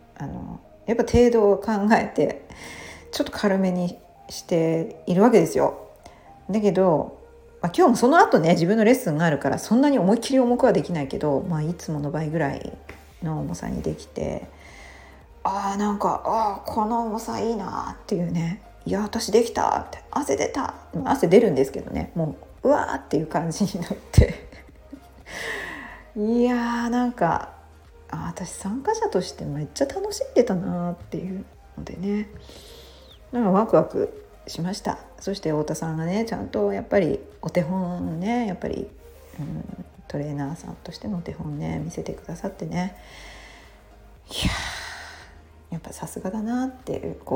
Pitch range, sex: 160-225 Hz, female